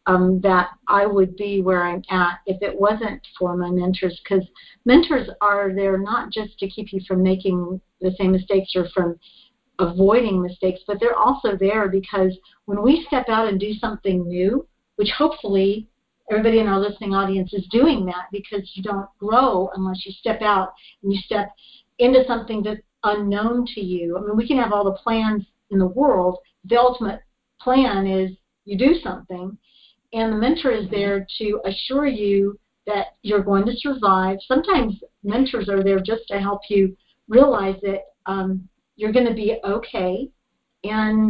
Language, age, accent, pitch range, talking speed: English, 50-69, American, 190-225 Hz, 175 wpm